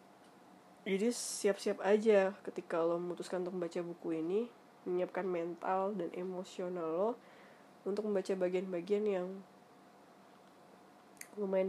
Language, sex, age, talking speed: Indonesian, female, 20-39, 105 wpm